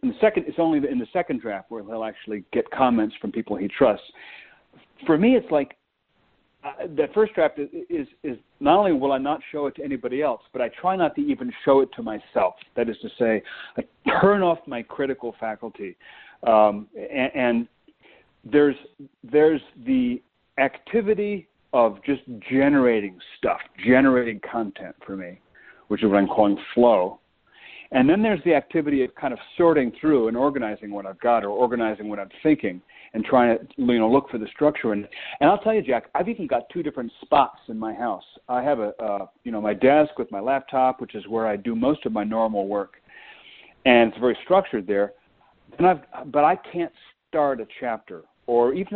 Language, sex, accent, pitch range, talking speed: English, male, American, 110-160 Hz, 190 wpm